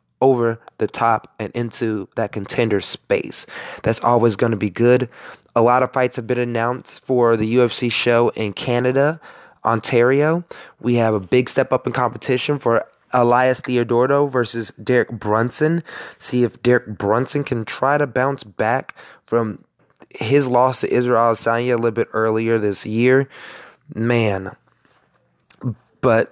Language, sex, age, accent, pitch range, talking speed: English, male, 20-39, American, 115-140 Hz, 150 wpm